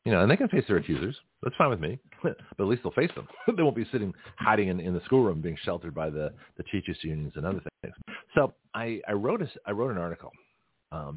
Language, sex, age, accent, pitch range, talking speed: English, male, 40-59, American, 80-100 Hz, 255 wpm